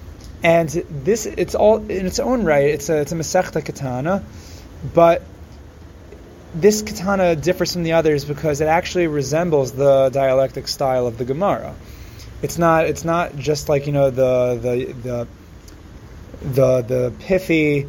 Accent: American